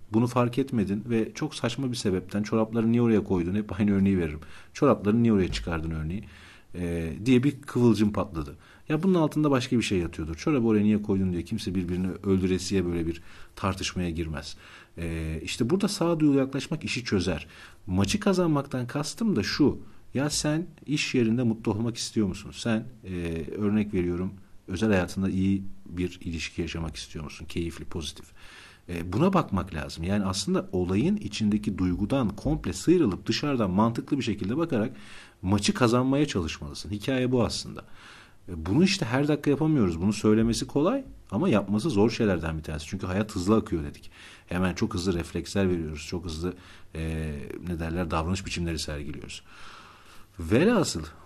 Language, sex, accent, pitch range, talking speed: Turkish, male, native, 85-120 Hz, 155 wpm